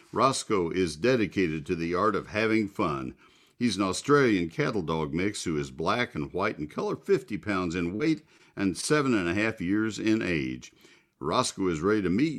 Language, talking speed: English, 190 wpm